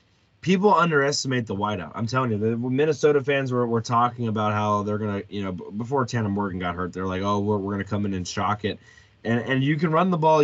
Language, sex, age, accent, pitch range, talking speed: English, male, 20-39, American, 110-145 Hz, 255 wpm